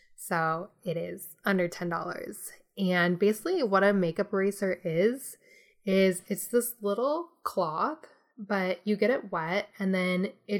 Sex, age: female, 10-29